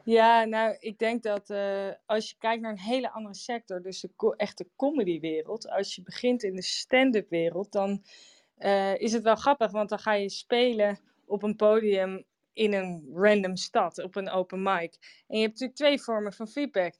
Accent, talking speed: Dutch, 195 wpm